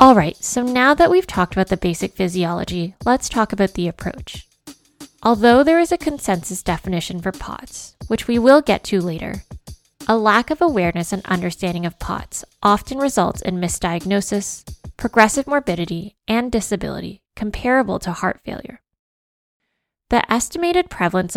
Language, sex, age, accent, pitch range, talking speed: English, female, 10-29, American, 180-245 Hz, 150 wpm